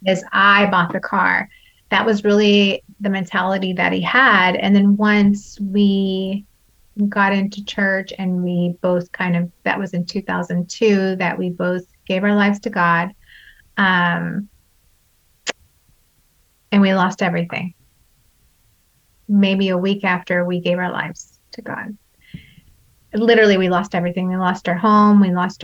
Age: 30-49